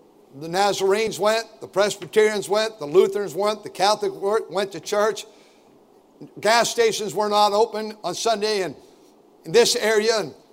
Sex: male